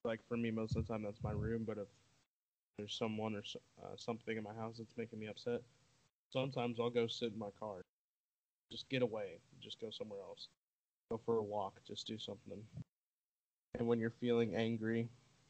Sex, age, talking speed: male, 20-39, 195 wpm